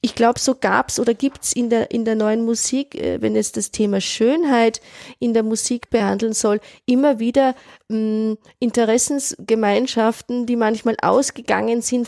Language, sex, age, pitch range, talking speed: German, female, 20-39, 210-245 Hz, 155 wpm